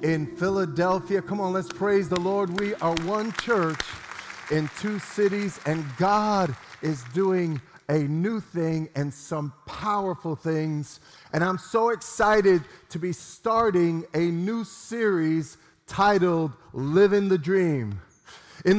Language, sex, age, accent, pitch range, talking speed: English, male, 40-59, American, 165-210 Hz, 135 wpm